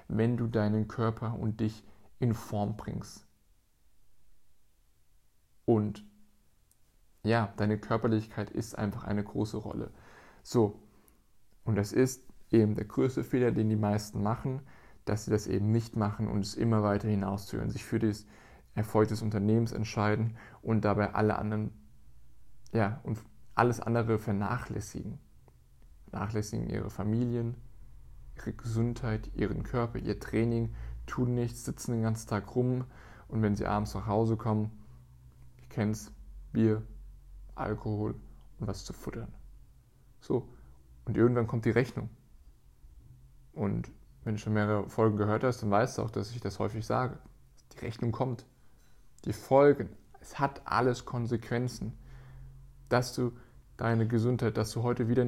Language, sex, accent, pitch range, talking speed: German, male, German, 105-120 Hz, 140 wpm